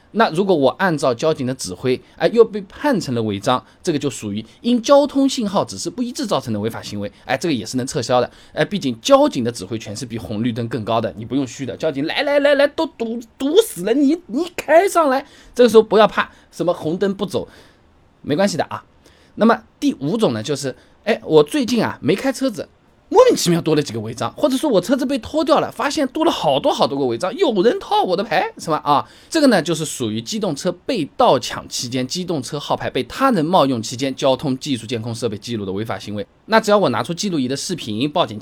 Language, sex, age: Chinese, male, 20-39